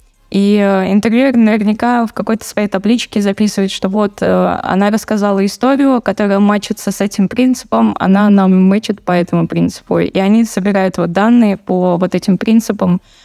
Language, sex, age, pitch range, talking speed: Russian, female, 20-39, 185-220 Hz, 155 wpm